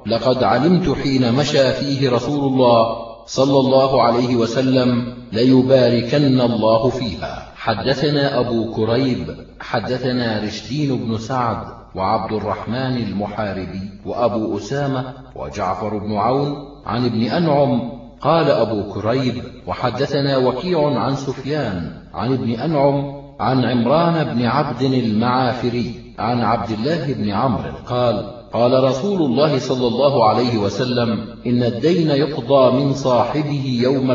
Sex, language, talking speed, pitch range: male, Arabic, 115 wpm, 120-140 Hz